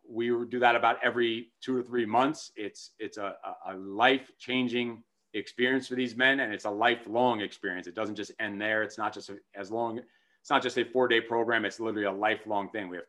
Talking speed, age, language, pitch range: 215 wpm, 30-49, English, 110-125 Hz